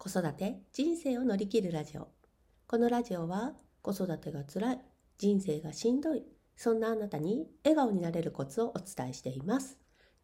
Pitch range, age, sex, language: 165-235 Hz, 40-59, female, Japanese